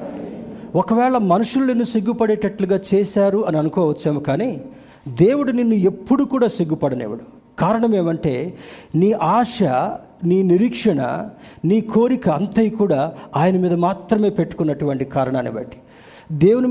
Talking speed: 110 wpm